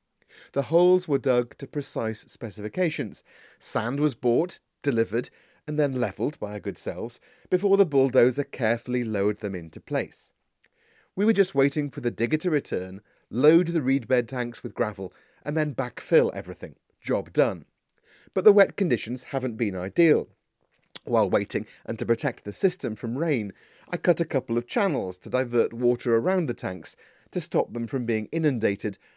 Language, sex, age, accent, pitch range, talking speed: English, male, 40-59, British, 115-150 Hz, 165 wpm